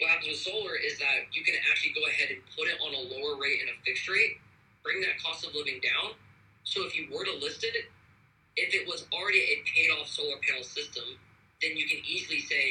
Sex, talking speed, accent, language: male, 230 wpm, American, English